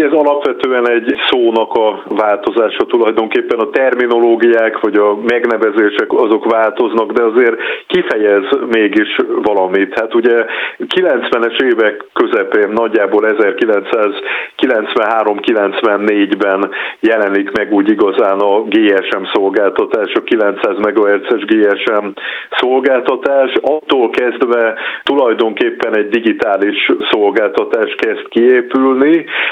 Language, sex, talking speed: Hungarian, male, 95 wpm